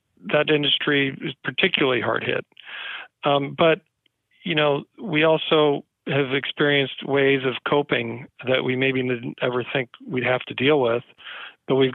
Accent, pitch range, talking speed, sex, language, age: American, 125-140 Hz, 150 wpm, male, English, 40-59